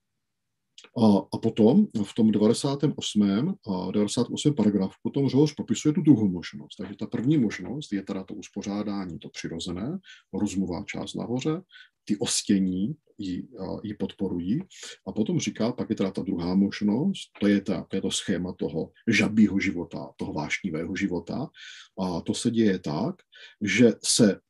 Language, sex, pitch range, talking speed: Czech, male, 100-120 Hz, 150 wpm